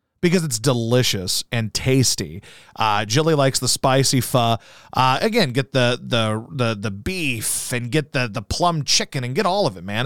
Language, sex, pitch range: English, male, 120-155 Hz